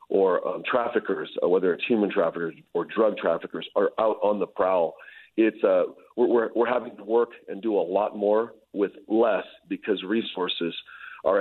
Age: 40-59